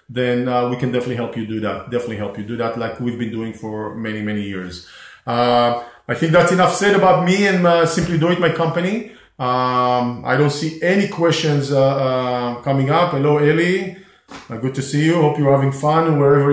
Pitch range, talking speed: 125-155 Hz, 210 wpm